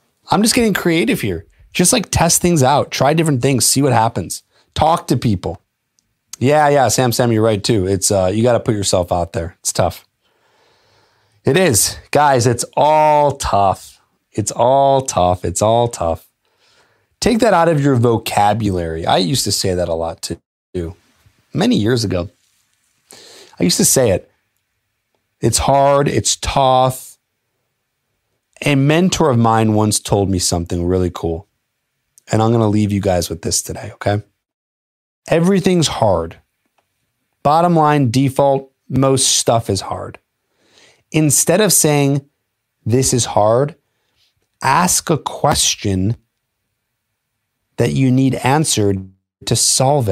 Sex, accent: male, American